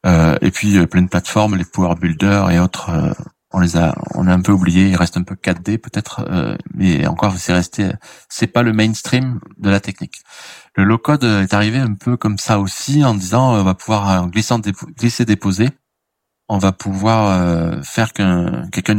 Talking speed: 210 wpm